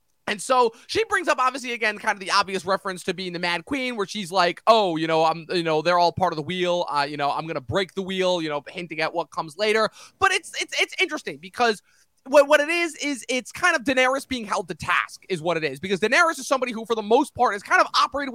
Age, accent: 20-39, American